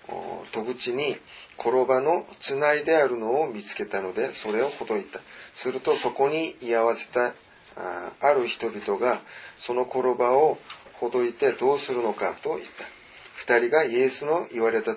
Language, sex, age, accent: Japanese, male, 30-49, Korean